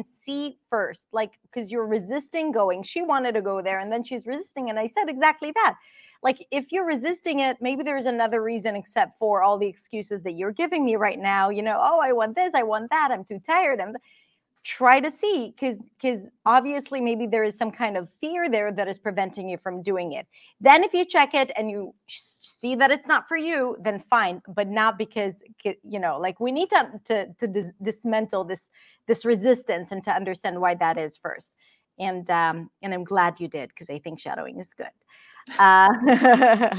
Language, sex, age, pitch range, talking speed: English, female, 30-49, 205-260 Hz, 205 wpm